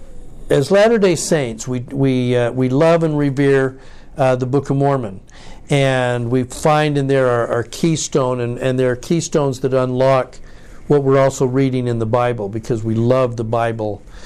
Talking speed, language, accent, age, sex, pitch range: 175 wpm, English, American, 60-79, male, 120-150 Hz